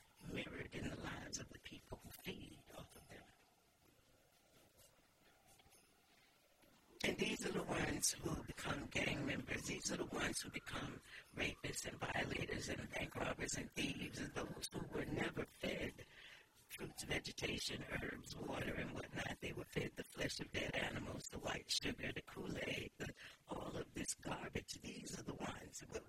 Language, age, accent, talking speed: English, 60-79, American, 160 wpm